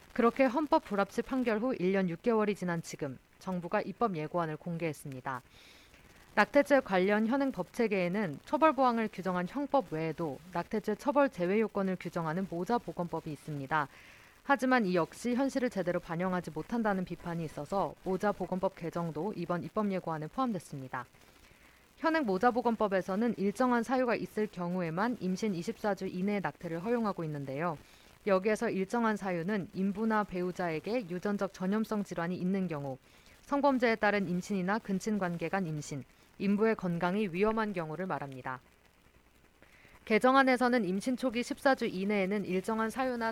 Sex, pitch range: female, 170-225 Hz